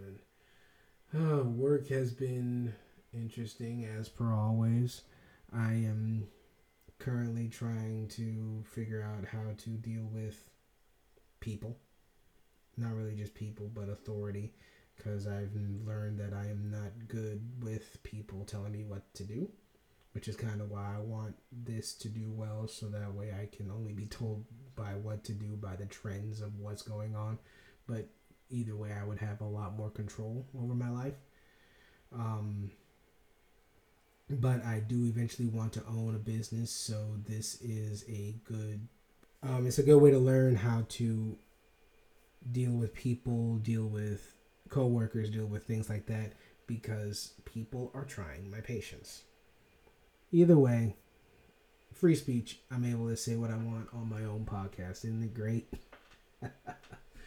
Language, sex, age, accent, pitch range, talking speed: English, male, 30-49, American, 105-115 Hz, 145 wpm